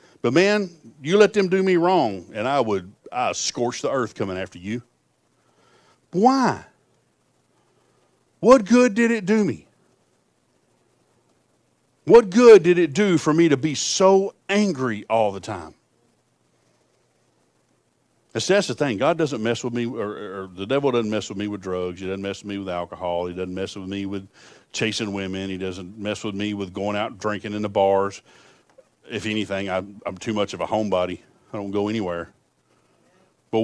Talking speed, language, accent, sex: 175 wpm, English, American, male